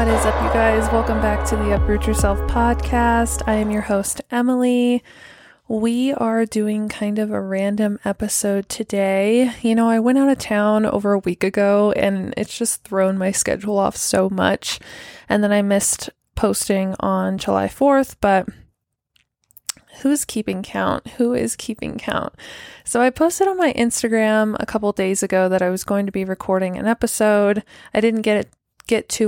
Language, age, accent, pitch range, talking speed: English, 20-39, American, 195-230 Hz, 180 wpm